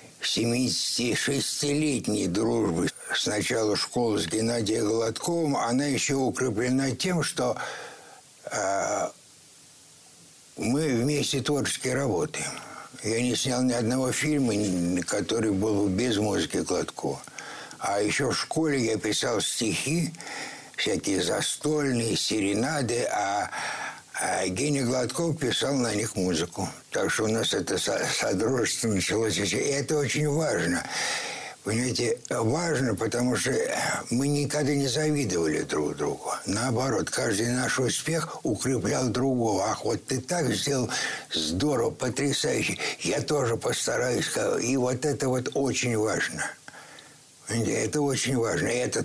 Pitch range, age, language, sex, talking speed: 115-145 Hz, 60-79, Russian, male, 115 wpm